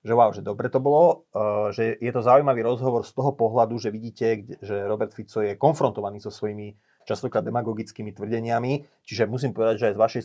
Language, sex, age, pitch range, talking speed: Slovak, male, 30-49, 105-125 Hz, 195 wpm